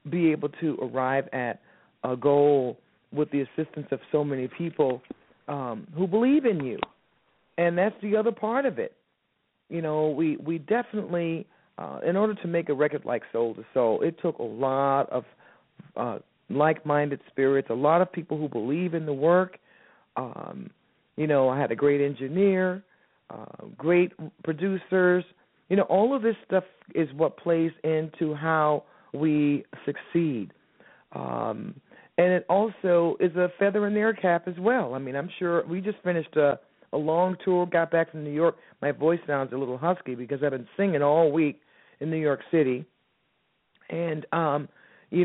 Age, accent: 40-59, American